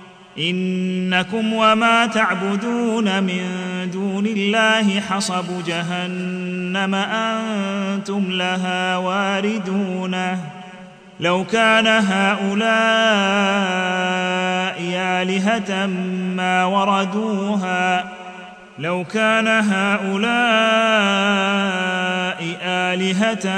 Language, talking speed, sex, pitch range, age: Arabic, 50 wpm, male, 185-210 Hz, 30-49